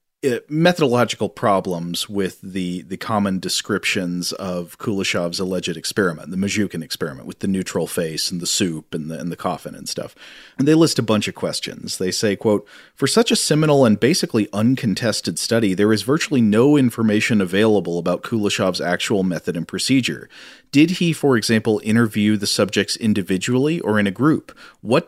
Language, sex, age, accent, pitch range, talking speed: English, male, 40-59, American, 95-125 Hz, 170 wpm